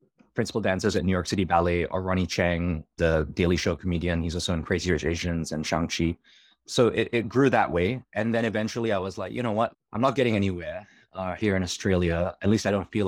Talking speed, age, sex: 230 wpm, 20-39, male